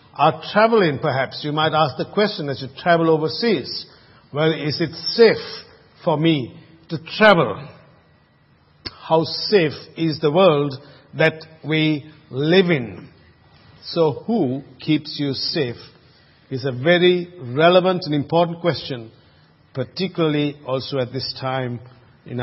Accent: Indian